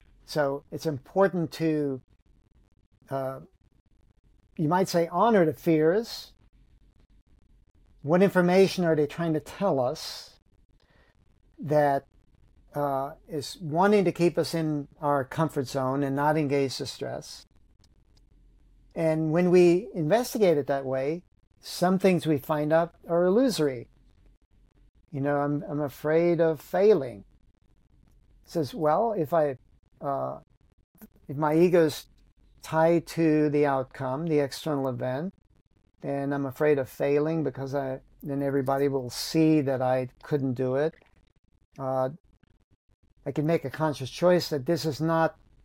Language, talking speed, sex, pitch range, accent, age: English, 130 wpm, male, 135-165 Hz, American, 50-69